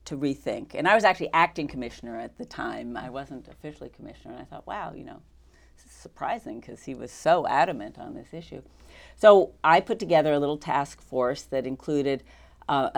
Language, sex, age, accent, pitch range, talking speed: English, female, 40-59, American, 130-155 Hz, 200 wpm